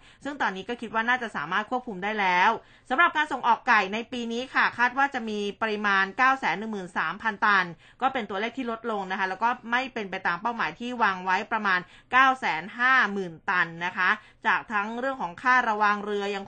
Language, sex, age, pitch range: Thai, female, 20-39, 200-255 Hz